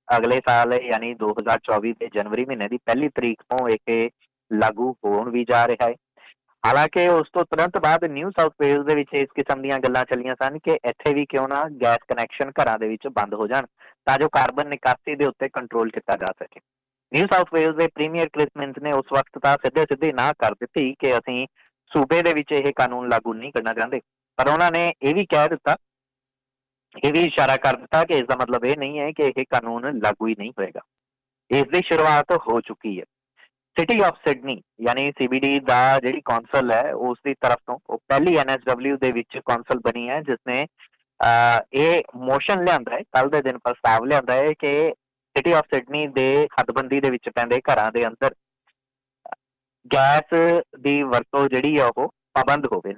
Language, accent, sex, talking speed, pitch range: English, Indian, male, 135 wpm, 120-145 Hz